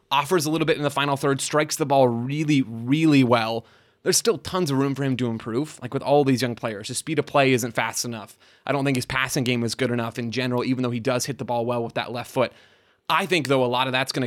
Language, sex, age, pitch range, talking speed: English, male, 20-39, 125-150 Hz, 280 wpm